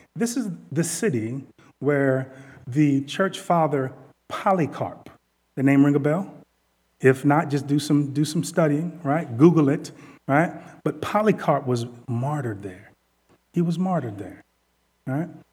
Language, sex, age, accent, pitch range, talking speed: English, male, 30-49, American, 130-165 Hz, 135 wpm